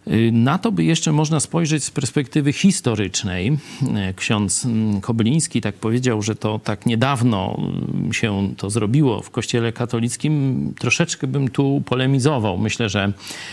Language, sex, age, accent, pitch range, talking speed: Polish, male, 40-59, native, 110-140 Hz, 130 wpm